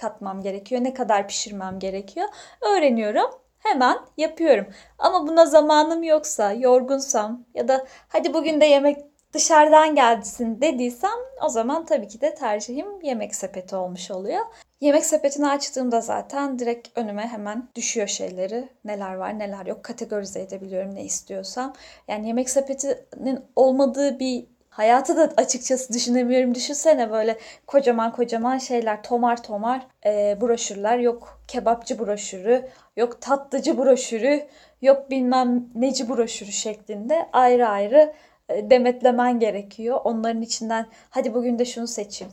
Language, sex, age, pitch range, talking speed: Turkish, female, 10-29, 220-270 Hz, 130 wpm